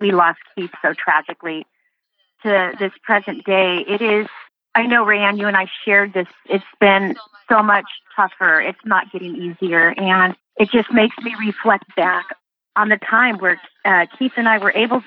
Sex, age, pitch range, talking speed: female, 40-59, 185-225 Hz, 180 wpm